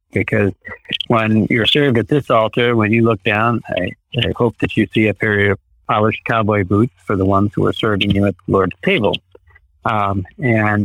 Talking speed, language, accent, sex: 200 wpm, English, American, male